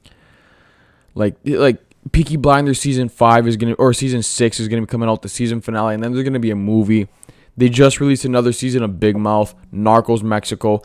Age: 20-39